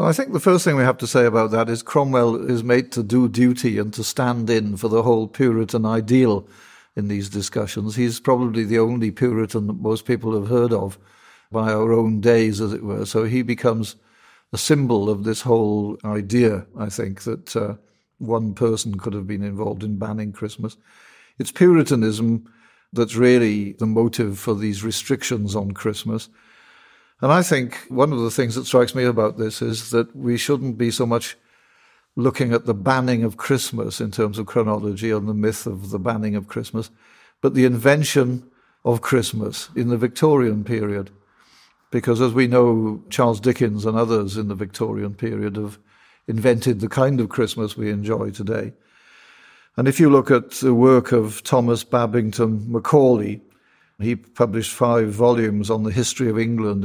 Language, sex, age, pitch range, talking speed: English, male, 50-69, 105-125 Hz, 175 wpm